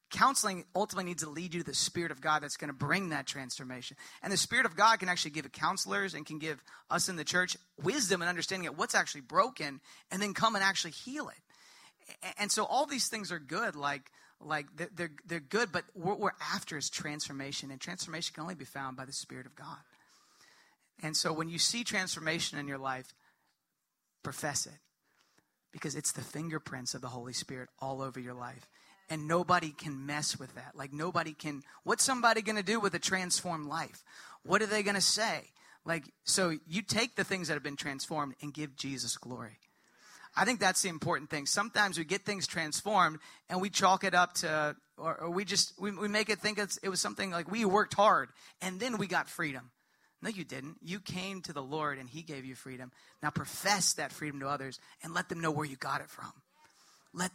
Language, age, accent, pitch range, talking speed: English, 40-59, American, 145-195 Hz, 215 wpm